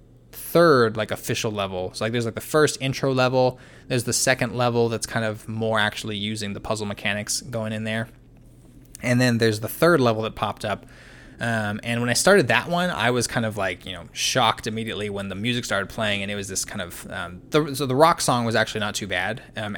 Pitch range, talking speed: 105-130 Hz, 230 wpm